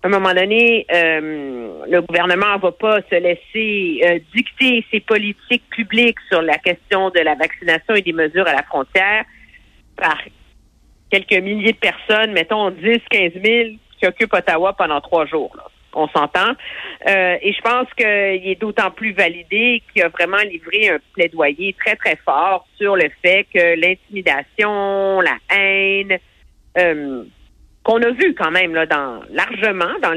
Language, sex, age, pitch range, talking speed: French, female, 50-69, 175-235 Hz, 165 wpm